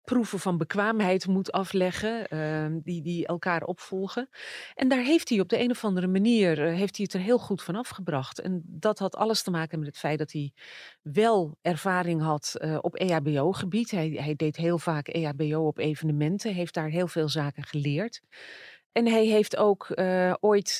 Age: 30-49